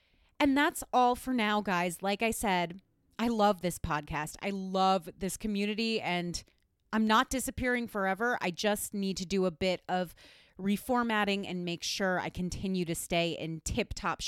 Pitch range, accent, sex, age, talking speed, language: 175-215 Hz, American, female, 30-49, 170 wpm, English